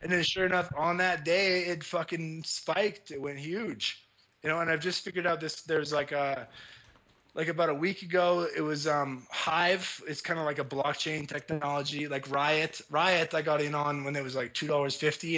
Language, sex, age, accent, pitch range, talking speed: English, male, 20-39, American, 140-165 Hz, 205 wpm